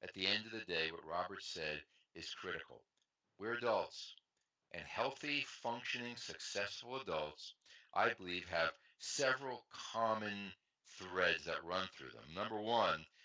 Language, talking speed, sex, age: English, 135 wpm, male, 60-79